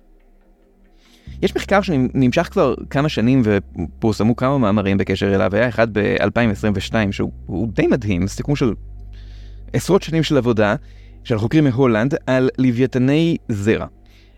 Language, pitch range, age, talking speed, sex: Hebrew, 100-125 Hz, 30-49, 120 wpm, male